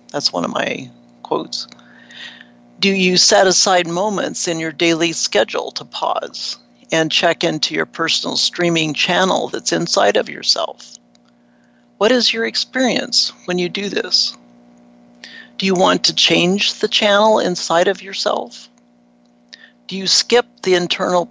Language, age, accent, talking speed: English, 60-79, American, 140 wpm